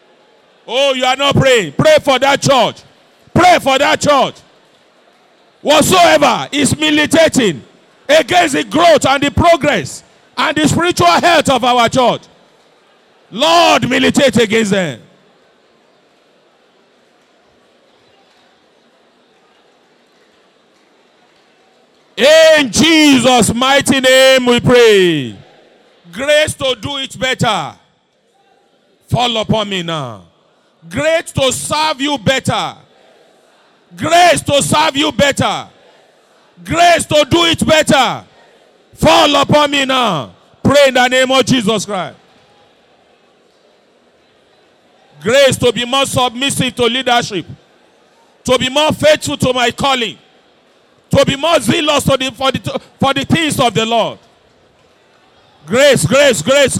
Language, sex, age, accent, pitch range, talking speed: English, male, 50-69, Nigerian, 240-300 Hz, 110 wpm